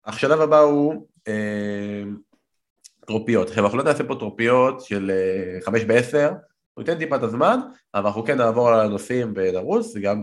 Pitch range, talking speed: 100-140 Hz, 155 wpm